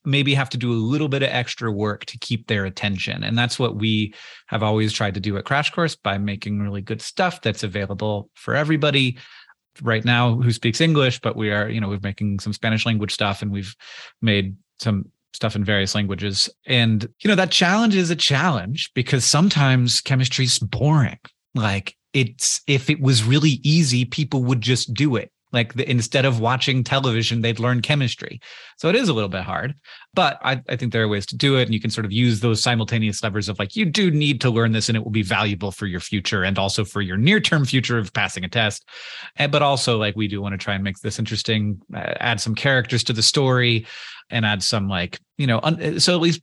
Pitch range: 105-140 Hz